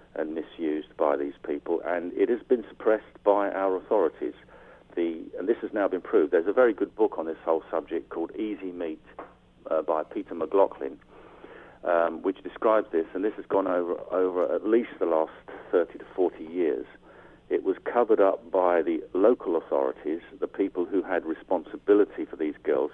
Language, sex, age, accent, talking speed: English, male, 50-69, British, 185 wpm